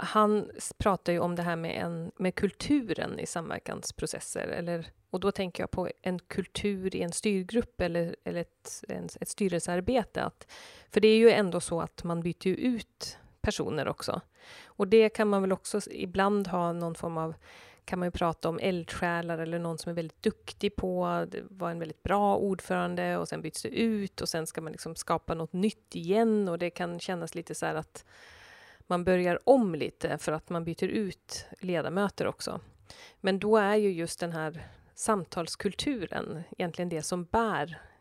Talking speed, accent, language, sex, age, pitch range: 180 wpm, native, Swedish, female, 30-49, 170-210 Hz